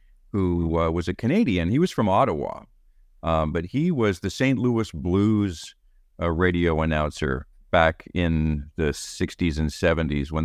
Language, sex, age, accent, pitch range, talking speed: English, male, 50-69, American, 80-100 Hz, 155 wpm